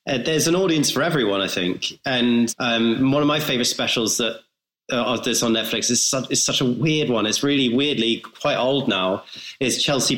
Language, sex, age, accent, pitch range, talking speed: English, male, 30-49, British, 115-140 Hz, 210 wpm